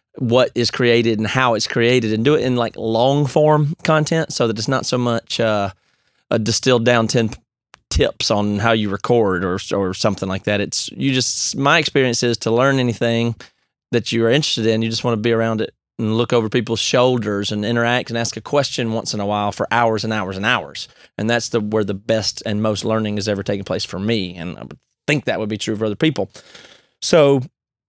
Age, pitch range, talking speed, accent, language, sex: 30-49, 110-130 Hz, 225 wpm, American, English, male